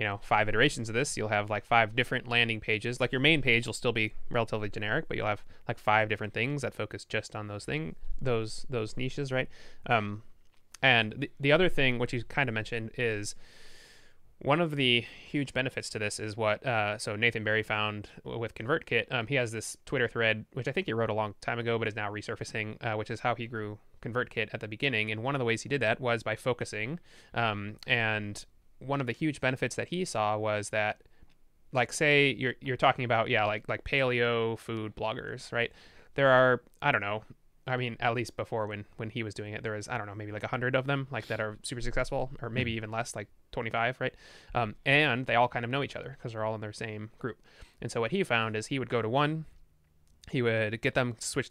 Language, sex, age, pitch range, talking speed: English, male, 20-39, 110-130 Hz, 235 wpm